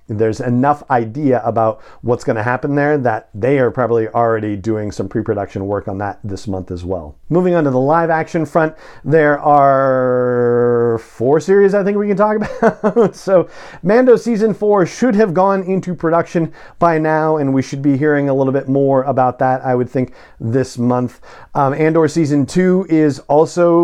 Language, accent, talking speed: English, American, 185 wpm